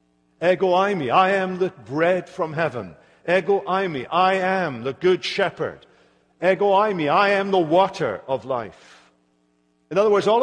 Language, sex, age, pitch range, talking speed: English, male, 50-69, 125-185 Hz, 175 wpm